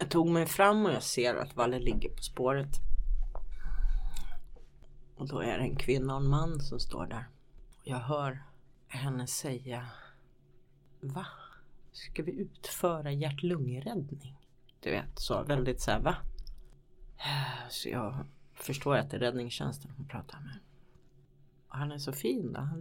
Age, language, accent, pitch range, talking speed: 30-49, English, Swedish, 125-145 Hz, 145 wpm